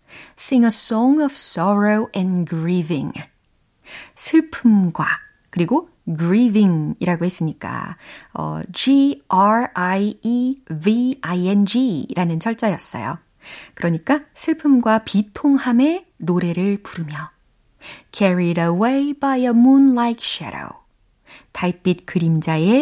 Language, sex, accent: Korean, female, native